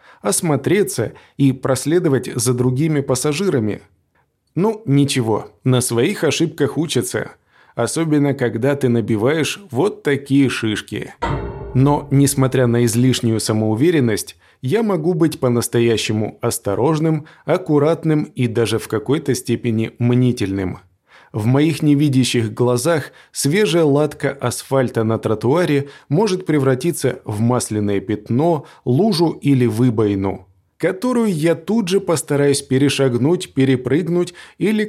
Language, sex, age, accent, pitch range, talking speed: Russian, male, 20-39, native, 120-155 Hz, 105 wpm